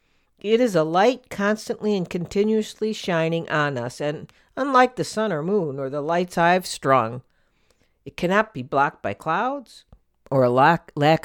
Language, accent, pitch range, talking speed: English, American, 135-195 Hz, 165 wpm